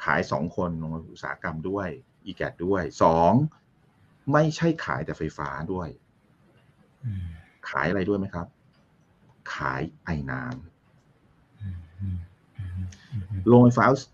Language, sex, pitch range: Thai, male, 75-120 Hz